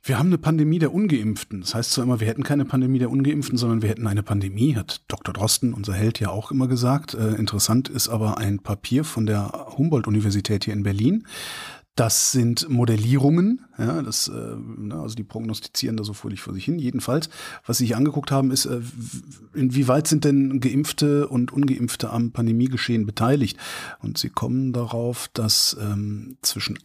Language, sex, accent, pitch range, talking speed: German, male, German, 110-140 Hz, 175 wpm